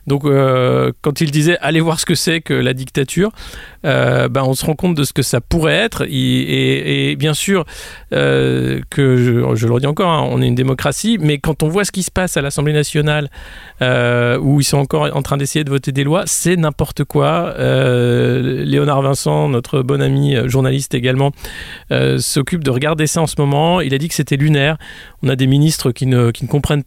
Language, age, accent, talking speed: French, 40-59, French, 220 wpm